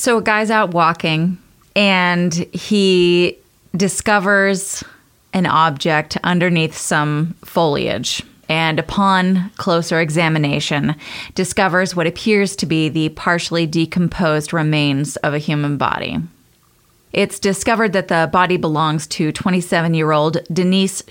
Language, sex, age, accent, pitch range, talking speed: English, female, 20-39, American, 155-190 Hz, 110 wpm